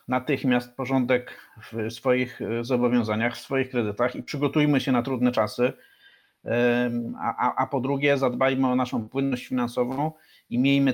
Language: Polish